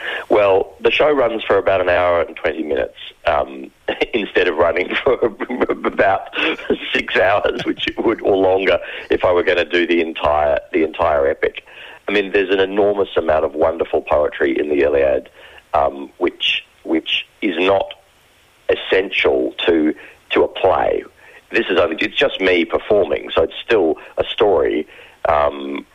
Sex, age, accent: male, 40-59, Australian